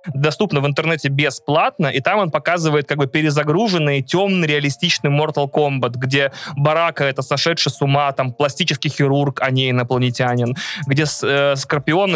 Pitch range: 140-170 Hz